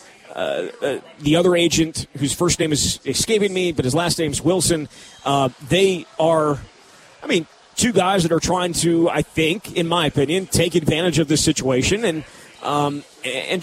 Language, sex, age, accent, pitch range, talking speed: English, male, 30-49, American, 145-185 Hz, 170 wpm